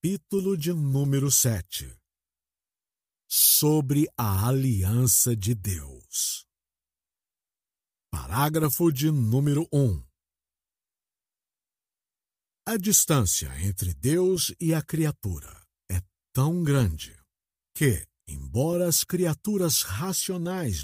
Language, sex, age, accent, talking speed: Portuguese, male, 60-79, Brazilian, 80 wpm